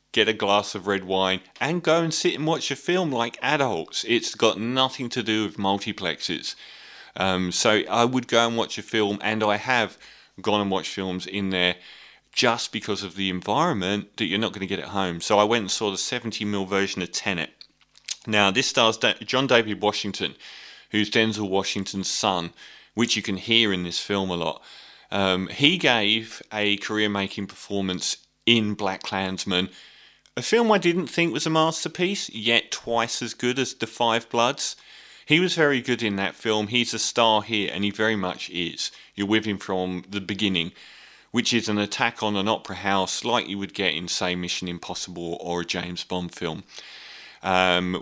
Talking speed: 190 wpm